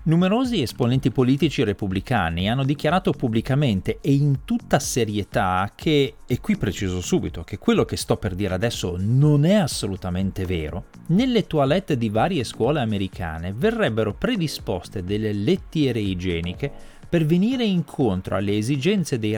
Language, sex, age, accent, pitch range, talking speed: Italian, male, 30-49, native, 95-145 Hz, 135 wpm